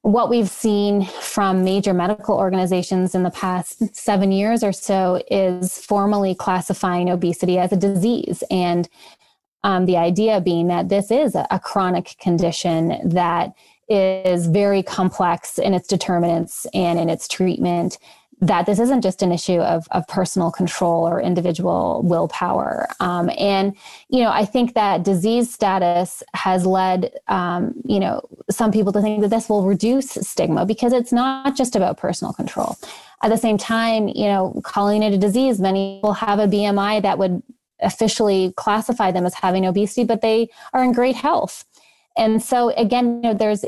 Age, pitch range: 20-39, 185-220 Hz